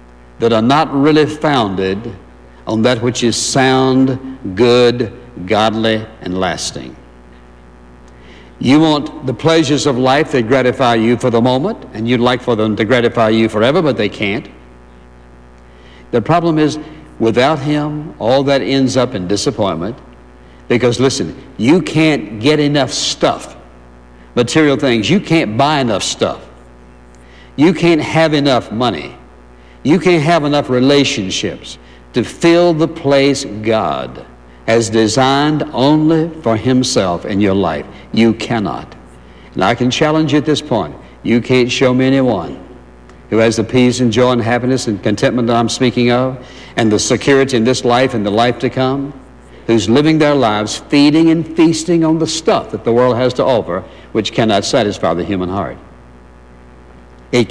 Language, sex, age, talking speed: English, male, 60-79, 155 wpm